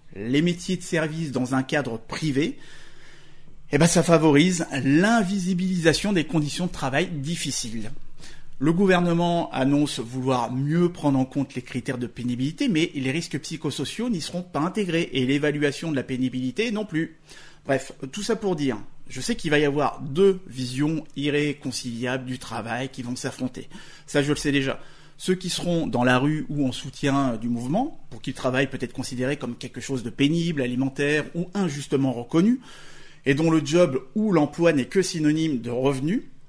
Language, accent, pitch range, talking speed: French, French, 130-170 Hz, 175 wpm